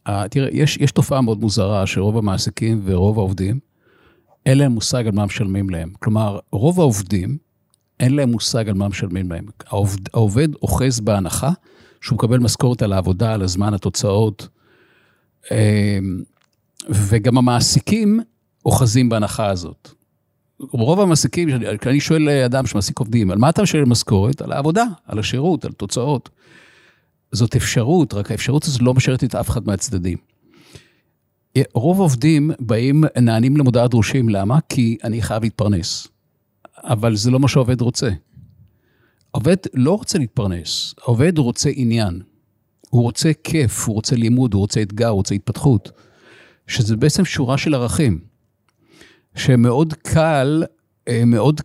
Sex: male